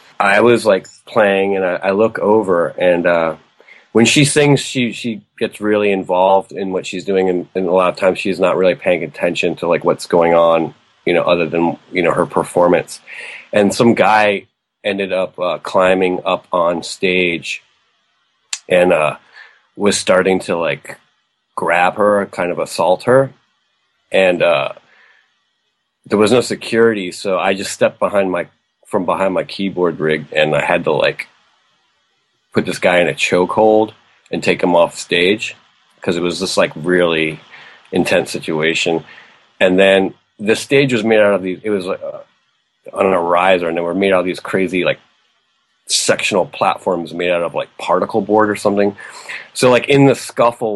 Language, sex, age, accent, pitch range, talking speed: English, male, 30-49, American, 90-105 Hz, 180 wpm